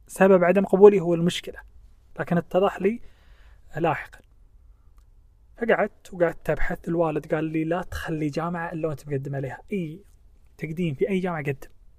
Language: Arabic